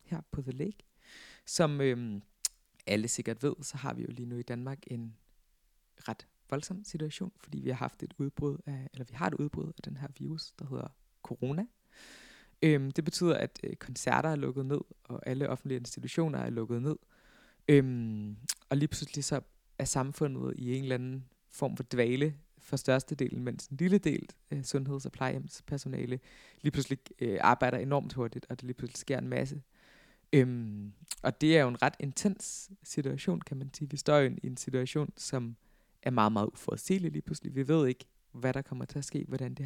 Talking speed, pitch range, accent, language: 195 wpm, 125-155 Hz, native, Danish